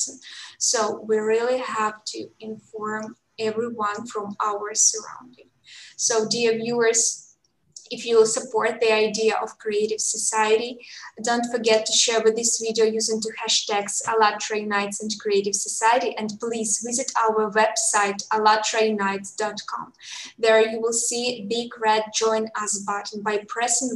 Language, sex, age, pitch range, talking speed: English, female, 10-29, 210-230 Hz, 135 wpm